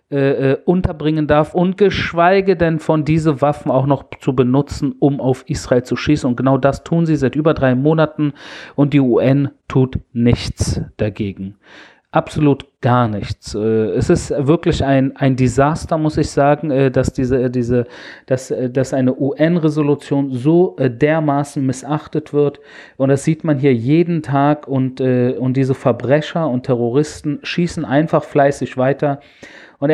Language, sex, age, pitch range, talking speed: German, male, 40-59, 130-150 Hz, 140 wpm